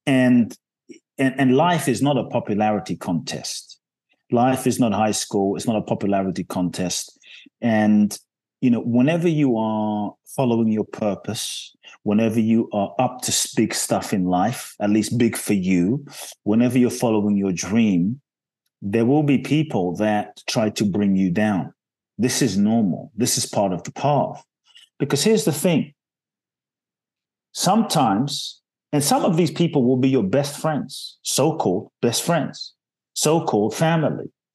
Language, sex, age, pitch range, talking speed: English, male, 30-49, 110-155 Hz, 150 wpm